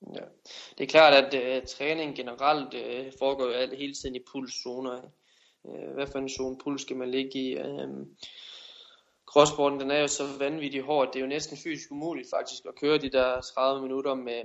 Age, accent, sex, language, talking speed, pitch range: 20-39, native, male, Danish, 190 wpm, 120-135 Hz